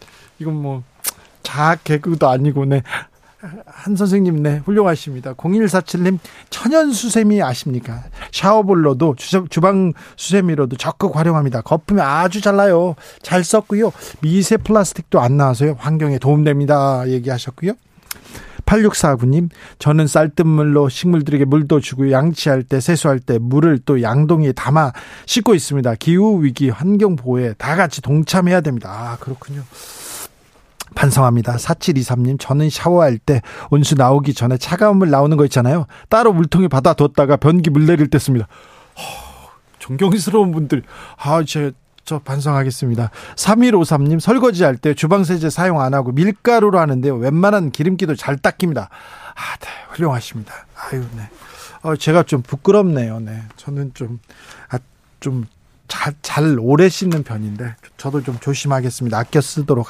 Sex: male